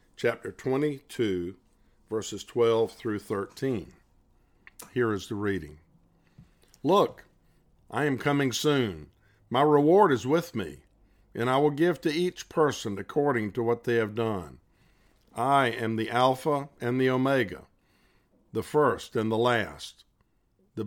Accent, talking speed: American, 130 wpm